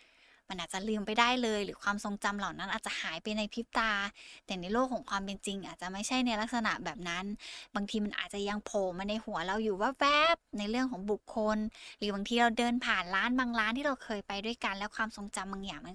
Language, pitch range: Thai, 200-235 Hz